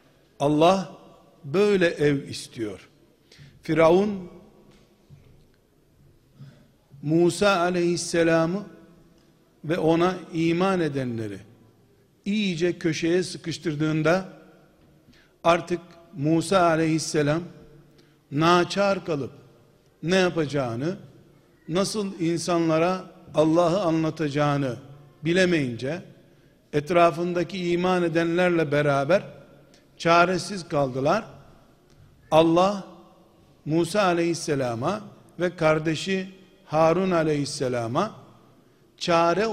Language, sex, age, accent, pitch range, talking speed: Turkish, male, 60-79, native, 150-175 Hz, 60 wpm